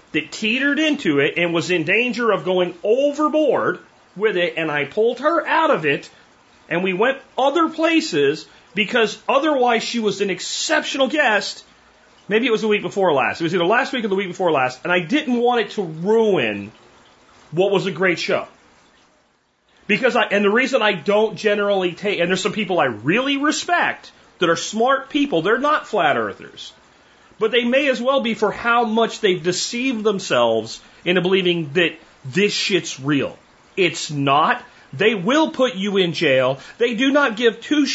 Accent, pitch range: American, 165-240 Hz